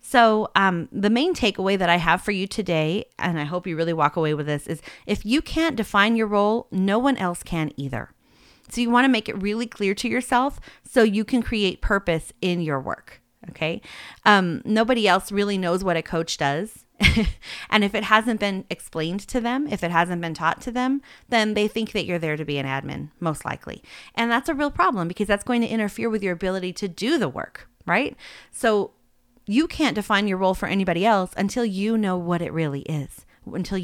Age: 30-49